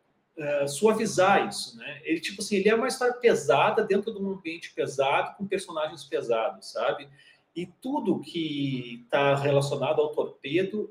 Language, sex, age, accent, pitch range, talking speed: Portuguese, male, 40-59, Brazilian, 150-210 Hz, 155 wpm